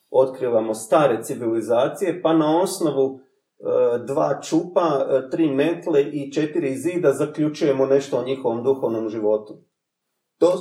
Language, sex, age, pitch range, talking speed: Croatian, male, 40-59, 140-180 Hz, 125 wpm